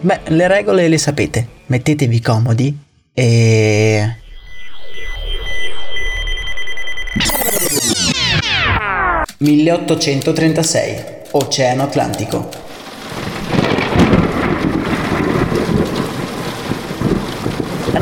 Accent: native